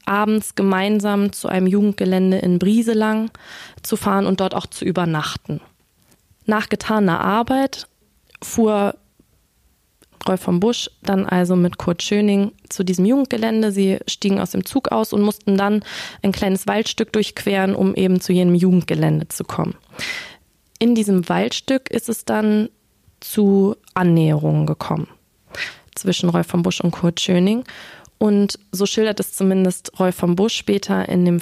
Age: 20-39